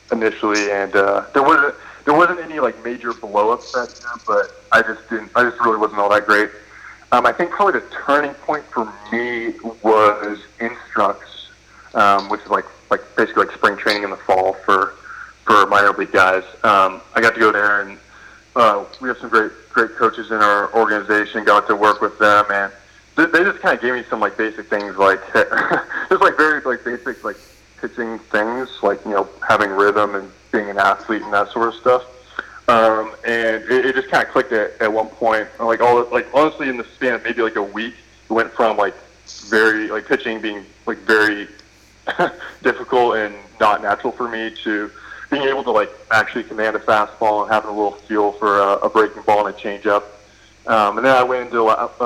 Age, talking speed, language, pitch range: 20-39, 205 wpm, English, 105-115 Hz